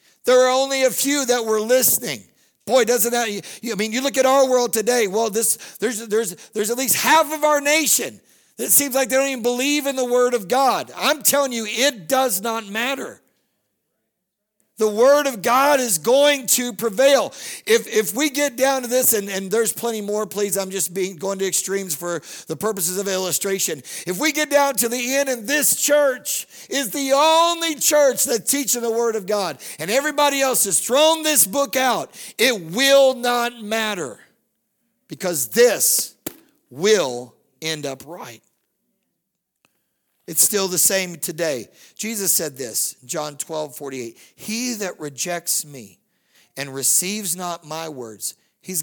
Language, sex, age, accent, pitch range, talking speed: English, male, 50-69, American, 165-260 Hz, 170 wpm